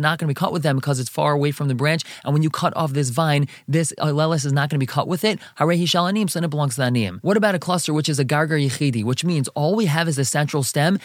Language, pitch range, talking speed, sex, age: English, 140-175 Hz, 295 wpm, male, 20-39